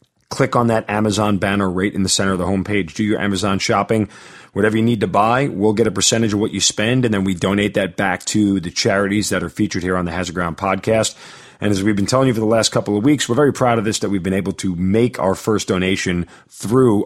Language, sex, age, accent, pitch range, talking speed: English, male, 40-59, American, 95-120 Hz, 260 wpm